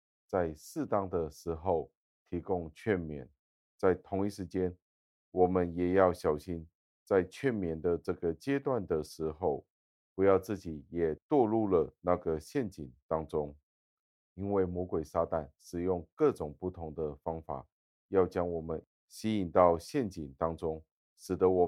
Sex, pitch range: male, 80-95 Hz